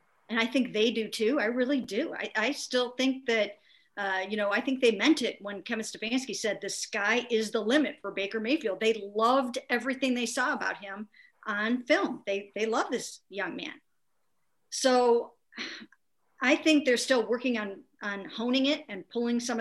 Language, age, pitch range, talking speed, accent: English, 50-69, 210-260 Hz, 190 wpm, American